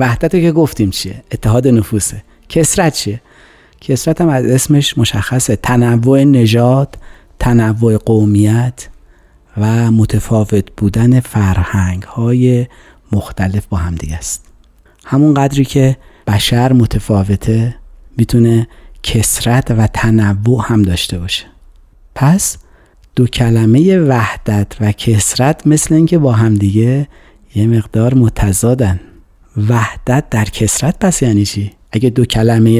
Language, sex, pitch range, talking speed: Persian, male, 105-130 Hz, 110 wpm